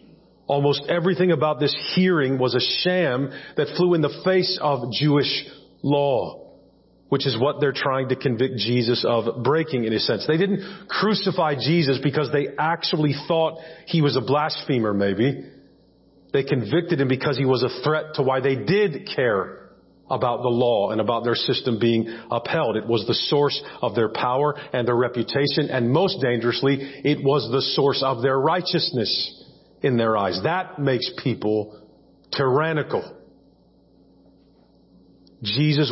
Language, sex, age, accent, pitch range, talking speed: English, male, 40-59, American, 120-160 Hz, 155 wpm